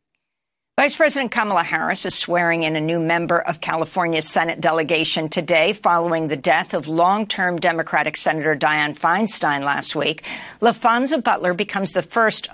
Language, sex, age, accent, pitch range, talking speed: English, female, 50-69, American, 165-220 Hz, 150 wpm